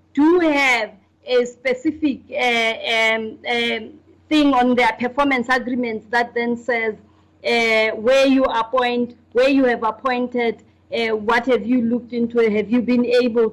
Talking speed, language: 145 wpm, English